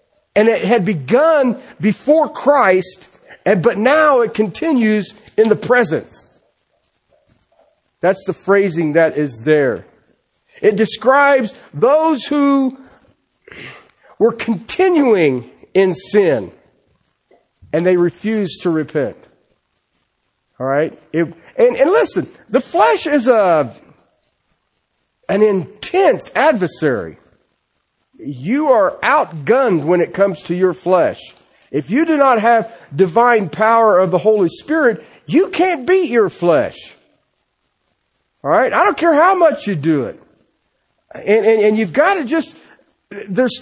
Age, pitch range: 40-59, 200-315 Hz